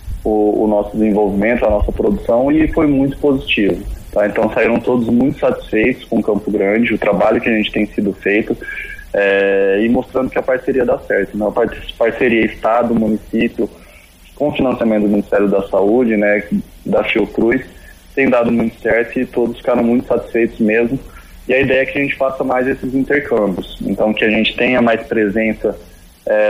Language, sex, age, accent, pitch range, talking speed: Portuguese, male, 20-39, Brazilian, 110-135 Hz, 175 wpm